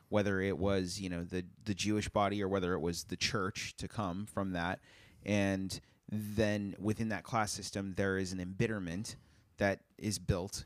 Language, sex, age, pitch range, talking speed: English, male, 30-49, 95-110 Hz, 180 wpm